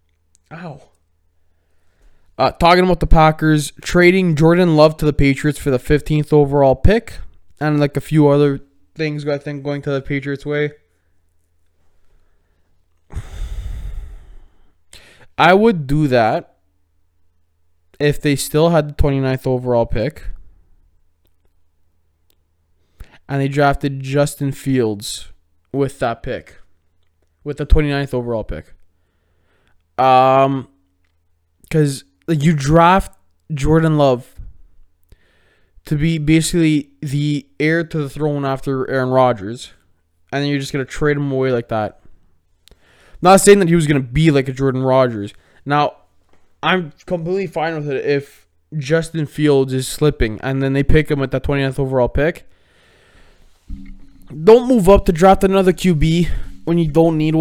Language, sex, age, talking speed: English, male, 20-39, 135 wpm